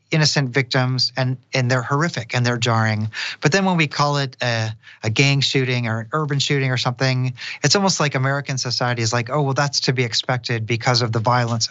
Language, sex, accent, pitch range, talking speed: English, male, American, 115-145 Hz, 215 wpm